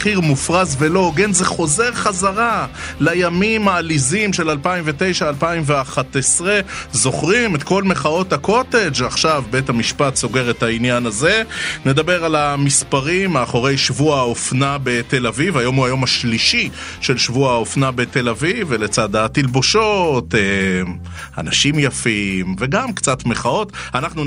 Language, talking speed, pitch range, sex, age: Hebrew, 120 wpm, 115-155 Hz, male, 30-49